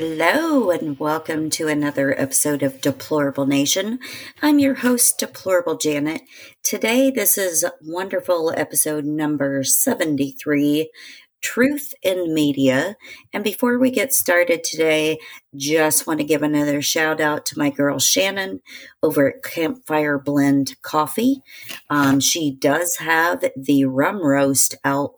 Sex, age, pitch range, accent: female, 40-59, 140-170 Hz, American